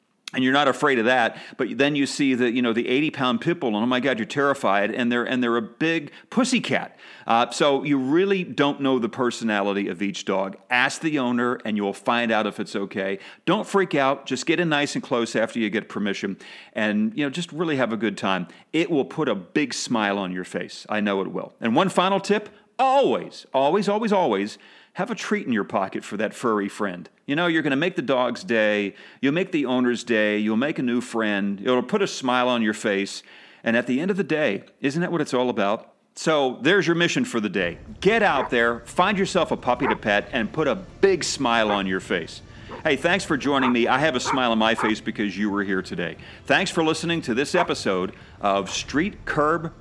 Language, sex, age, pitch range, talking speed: English, male, 40-59, 105-160 Hz, 235 wpm